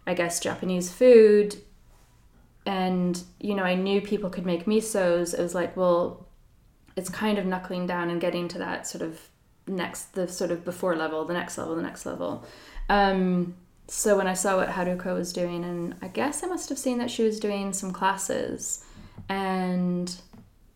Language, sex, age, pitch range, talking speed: English, female, 10-29, 175-200 Hz, 180 wpm